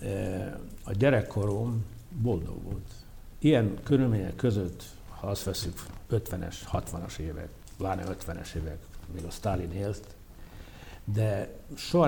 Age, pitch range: 60-79, 95-115 Hz